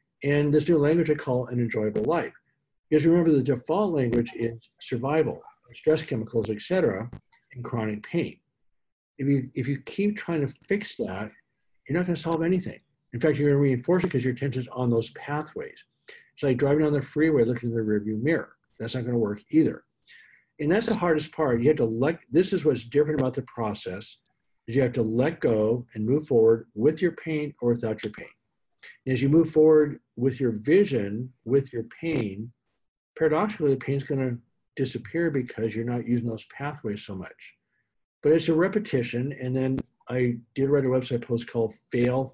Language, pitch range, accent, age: English, 120-155 Hz, American, 60-79